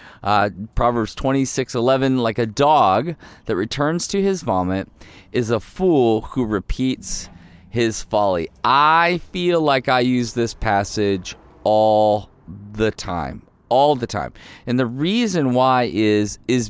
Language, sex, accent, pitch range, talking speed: English, male, American, 105-135 Hz, 140 wpm